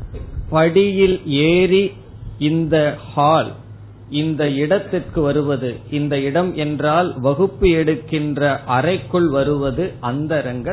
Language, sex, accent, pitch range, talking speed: Tamil, male, native, 120-165 Hz, 60 wpm